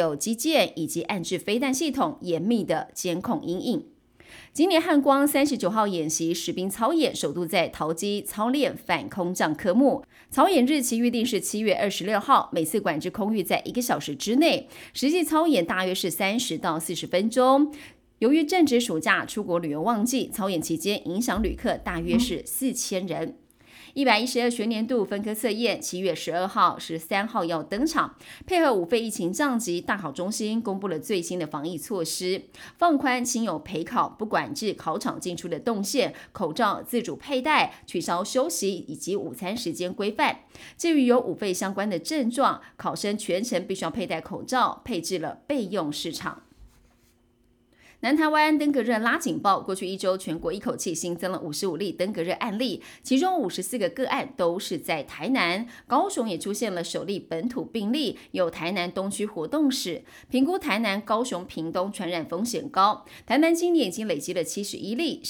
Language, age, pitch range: Chinese, 30-49, 175-260 Hz